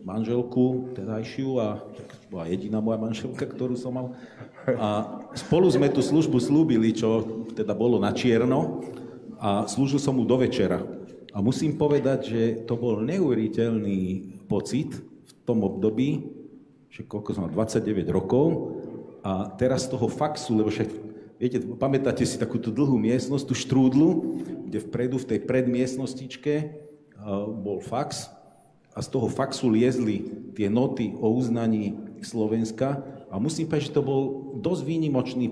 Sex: male